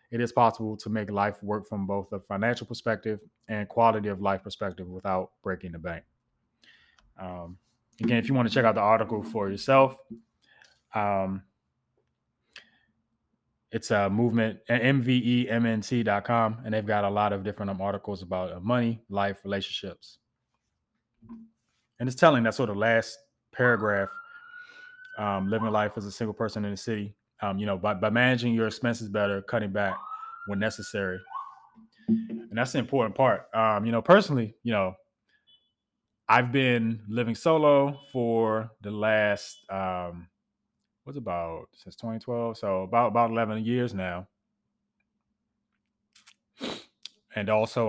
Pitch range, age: 100-120 Hz, 20-39